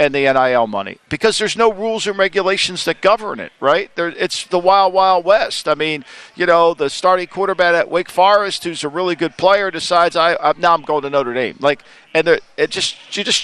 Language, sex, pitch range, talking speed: English, male, 150-195 Hz, 220 wpm